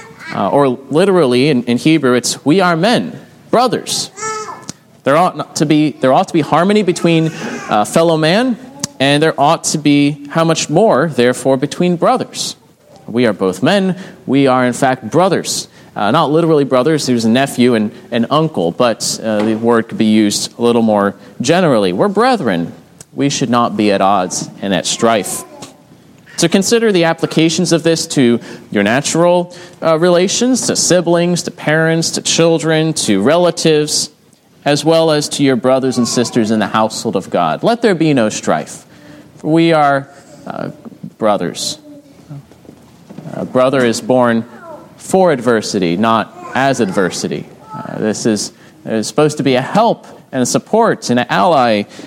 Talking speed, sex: 160 wpm, male